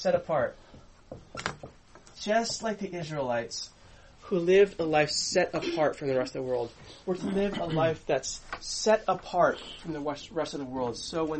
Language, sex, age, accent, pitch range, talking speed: English, male, 20-39, American, 145-195 Hz, 180 wpm